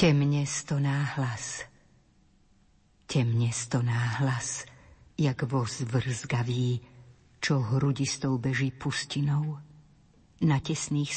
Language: Slovak